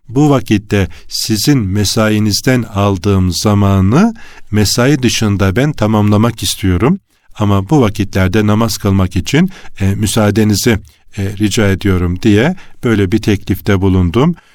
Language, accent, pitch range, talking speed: Turkish, native, 95-115 Hz, 105 wpm